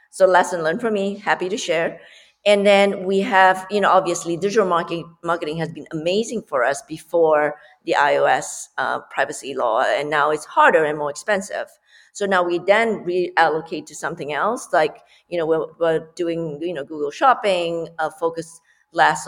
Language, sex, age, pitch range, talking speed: English, female, 50-69, 165-200 Hz, 175 wpm